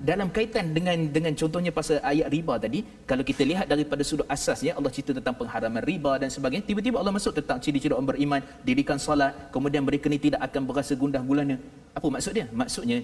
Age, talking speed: 30-49, 195 wpm